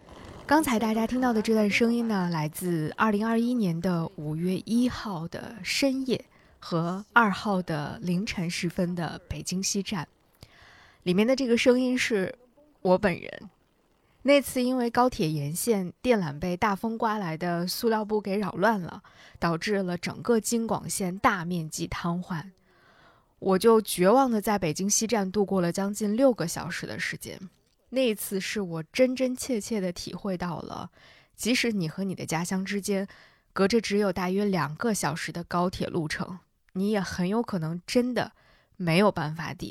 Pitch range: 175-225 Hz